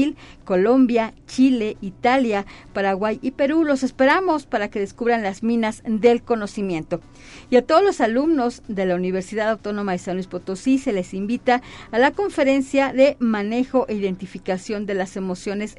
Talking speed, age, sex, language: 155 wpm, 40-59, female, Spanish